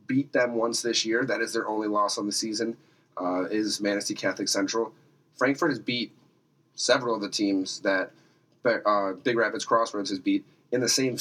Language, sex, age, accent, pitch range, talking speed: English, male, 30-49, American, 105-150 Hz, 185 wpm